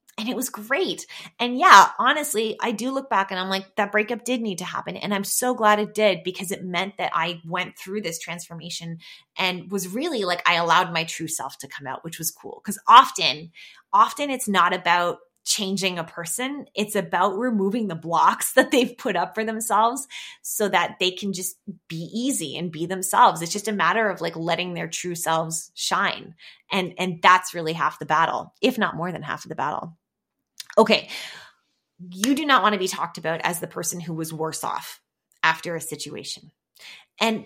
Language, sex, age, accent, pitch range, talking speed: English, female, 20-39, American, 170-220 Hz, 200 wpm